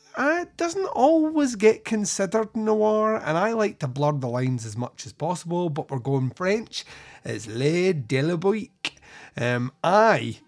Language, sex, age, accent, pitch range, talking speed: English, male, 30-49, British, 130-175 Hz, 150 wpm